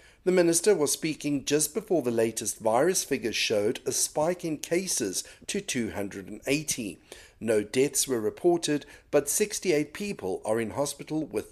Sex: male